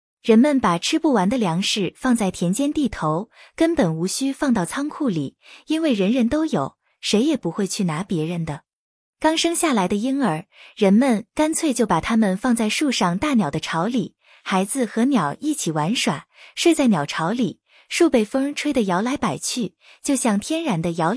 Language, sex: Chinese, female